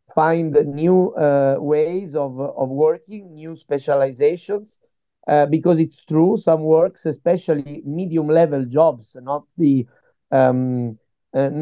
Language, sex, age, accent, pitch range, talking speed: French, male, 50-69, Italian, 140-170 Hz, 120 wpm